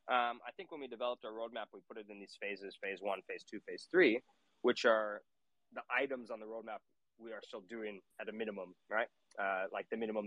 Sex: male